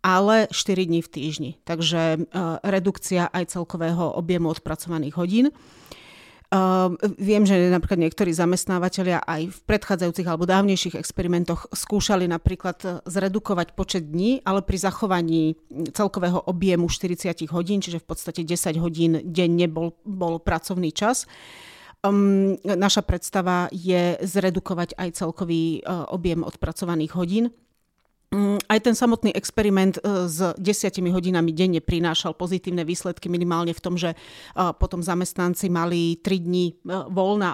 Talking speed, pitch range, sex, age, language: 120 wpm, 170-195 Hz, female, 40-59, Slovak